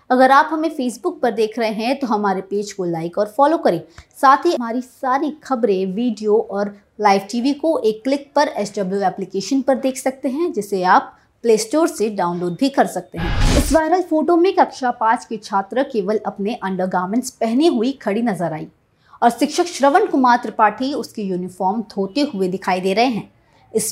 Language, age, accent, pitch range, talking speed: Hindi, 20-39, native, 205-275 Hz, 190 wpm